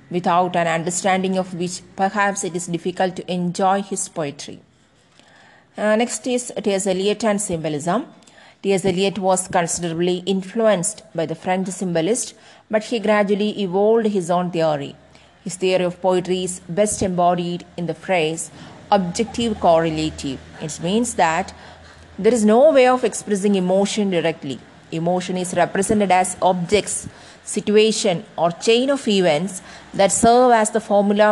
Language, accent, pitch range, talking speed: English, Indian, 180-210 Hz, 140 wpm